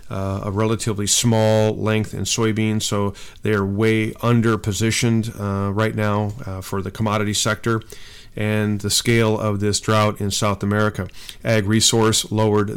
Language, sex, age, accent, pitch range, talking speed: English, male, 40-59, American, 100-110 Hz, 150 wpm